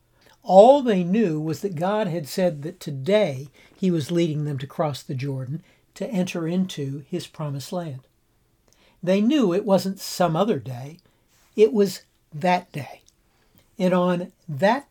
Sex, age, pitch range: male, 60-79, 145-195 Hz